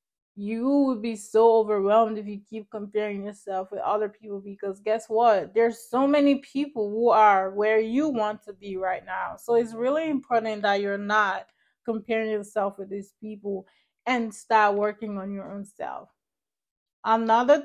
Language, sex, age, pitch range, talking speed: English, female, 20-39, 200-230 Hz, 165 wpm